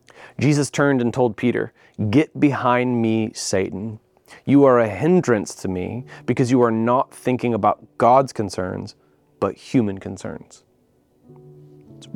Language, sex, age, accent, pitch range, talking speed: English, male, 30-49, American, 110-135 Hz, 135 wpm